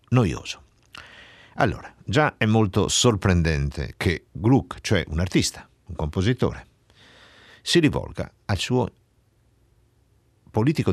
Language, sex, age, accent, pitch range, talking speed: Italian, male, 60-79, native, 85-125 Hz, 100 wpm